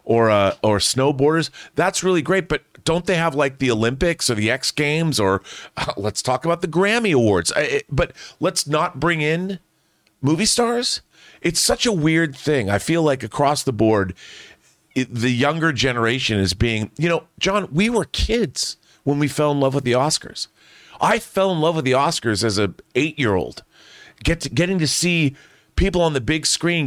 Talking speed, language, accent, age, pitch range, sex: 190 wpm, English, American, 40-59, 120-170 Hz, male